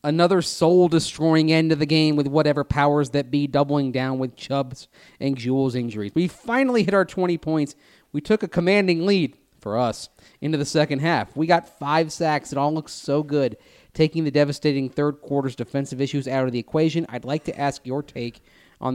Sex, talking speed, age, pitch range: male, 195 wpm, 30-49, 130-160 Hz